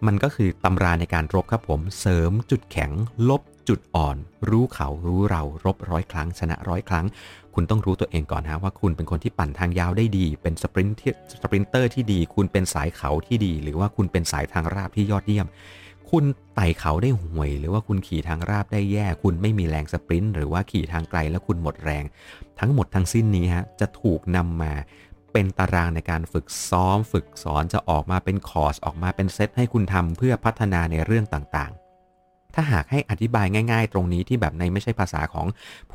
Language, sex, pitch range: Thai, male, 85-105 Hz